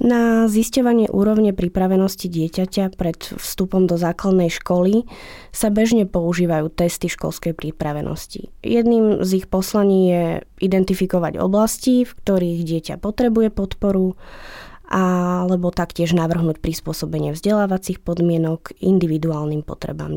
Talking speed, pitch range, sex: 105 wpm, 170-205 Hz, female